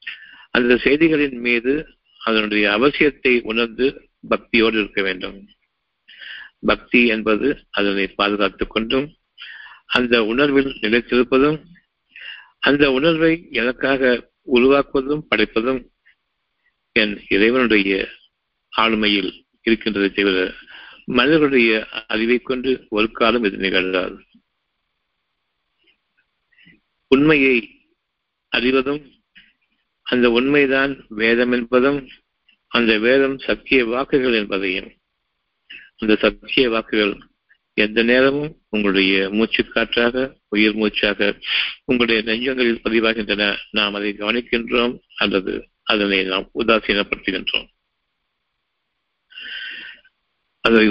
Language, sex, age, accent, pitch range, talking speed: Tamil, male, 50-69, native, 105-130 Hz, 75 wpm